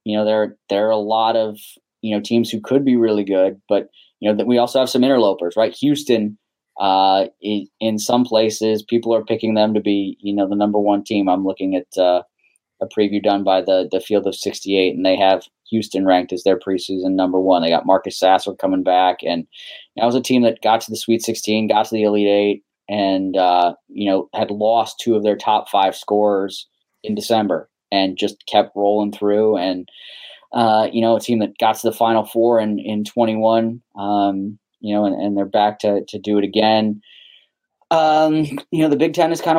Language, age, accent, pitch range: English, 20-39, American, 100-115 Hz